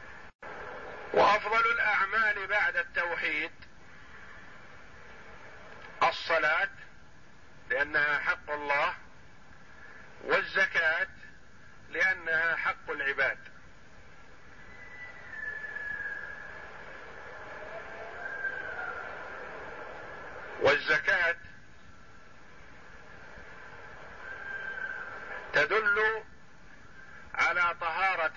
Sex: male